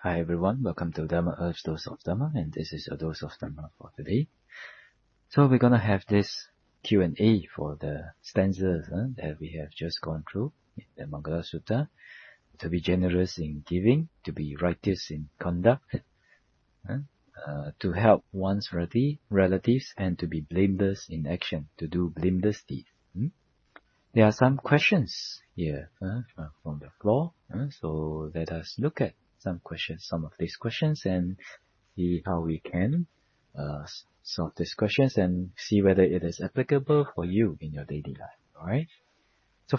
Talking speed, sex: 165 wpm, male